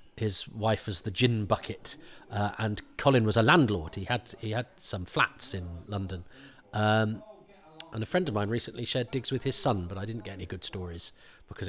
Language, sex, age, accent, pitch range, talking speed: English, male, 40-59, British, 105-140 Hz, 205 wpm